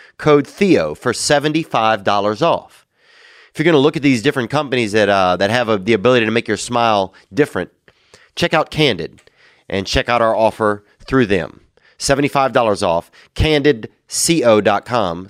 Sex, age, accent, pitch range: male, 30-49, American, 100-130 Hz